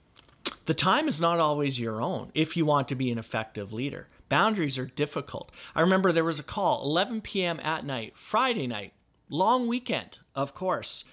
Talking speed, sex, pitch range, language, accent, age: 185 wpm, male, 120-165 Hz, English, American, 50-69